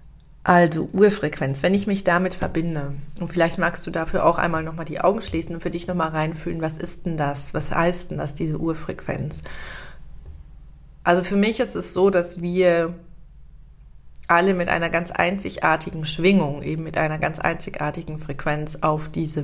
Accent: German